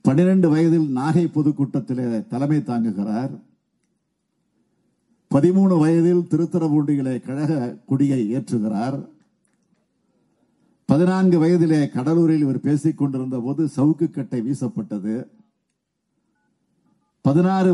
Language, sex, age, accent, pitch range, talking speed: Tamil, male, 50-69, native, 130-170 Hz, 80 wpm